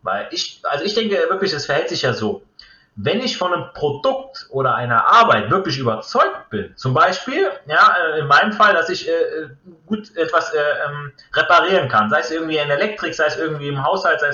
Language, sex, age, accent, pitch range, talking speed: German, male, 30-49, German, 125-195 Hz, 200 wpm